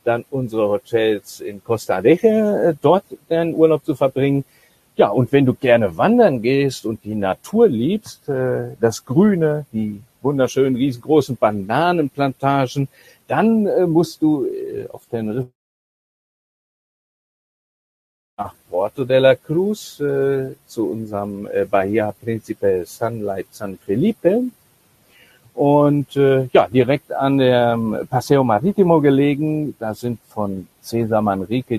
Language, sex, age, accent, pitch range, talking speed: German, male, 60-79, German, 115-145 Hz, 115 wpm